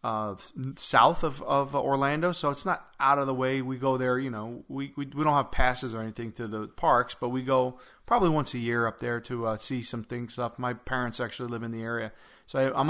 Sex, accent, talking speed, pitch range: male, American, 245 wpm, 120-140 Hz